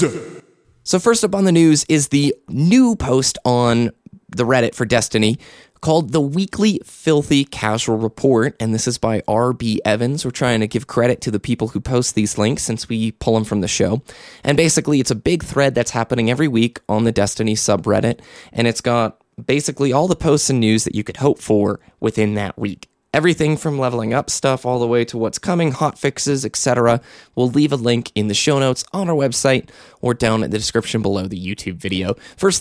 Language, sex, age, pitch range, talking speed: English, male, 20-39, 110-140 Hz, 205 wpm